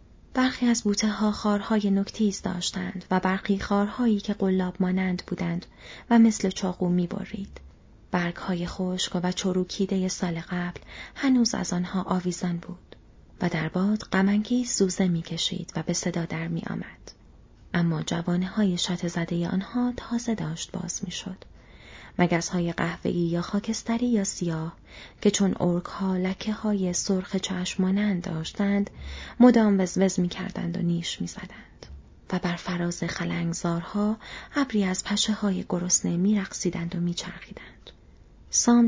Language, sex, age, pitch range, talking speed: Persian, female, 30-49, 175-210 Hz, 135 wpm